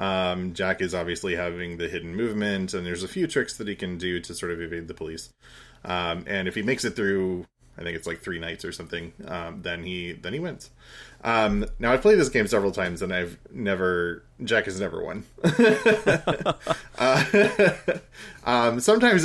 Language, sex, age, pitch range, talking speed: English, male, 20-39, 85-110 Hz, 195 wpm